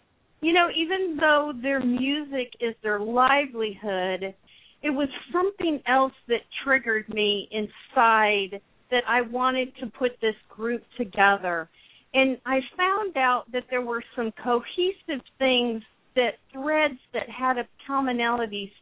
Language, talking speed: English, 130 wpm